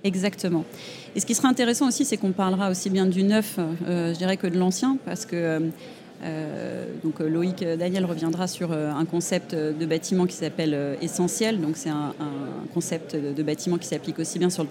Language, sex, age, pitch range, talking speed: French, female, 30-49, 160-195 Hz, 195 wpm